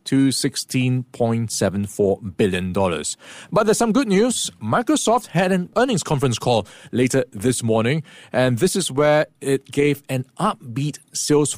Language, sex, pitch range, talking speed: English, male, 115-145 Hz, 135 wpm